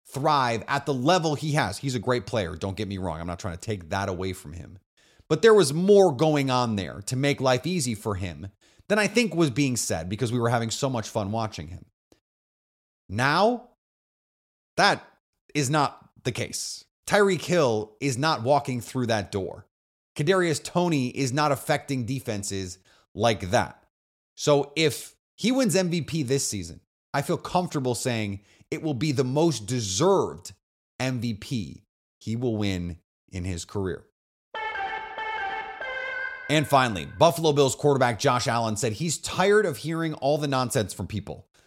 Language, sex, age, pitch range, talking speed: English, male, 30-49, 105-155 Hz, 165 wpm